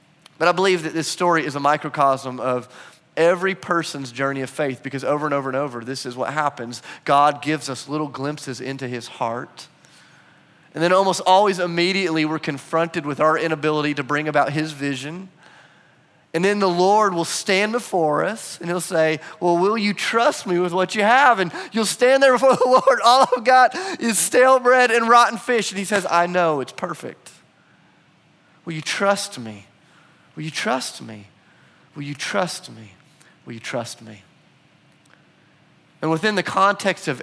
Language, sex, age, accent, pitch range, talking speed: English, male, 30-49, American, 130-175 Hz, 180 wpm